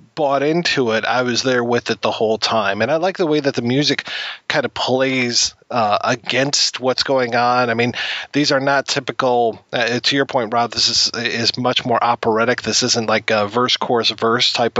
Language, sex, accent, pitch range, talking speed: English, male, American, 110-125 Hz, 210 wpm